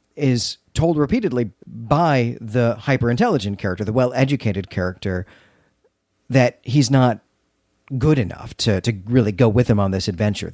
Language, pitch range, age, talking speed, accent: English, 105-125 Hz, 40-59, 150 wpm, American